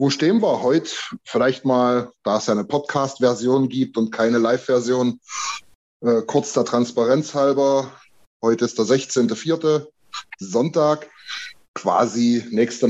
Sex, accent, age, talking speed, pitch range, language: male, German, 20-39, 120 wpm, 110-135 Hz, German